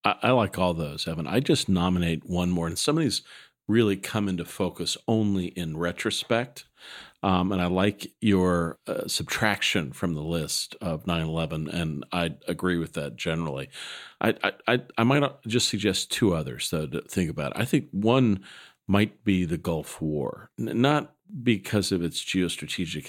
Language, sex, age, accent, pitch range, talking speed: English, male, 50-69, American, 80-105 Hz, 175 wpm